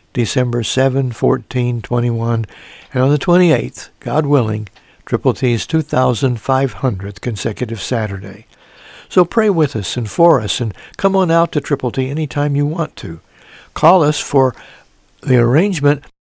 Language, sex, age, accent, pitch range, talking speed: English, male, 60-79, American, 120-150 Hz, 140 wpm